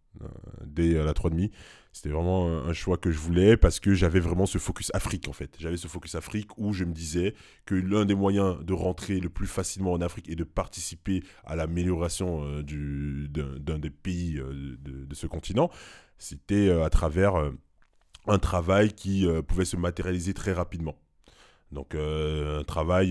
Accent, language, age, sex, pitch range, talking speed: French, French, 20-39, male, 75-95 Hz, 195 wpm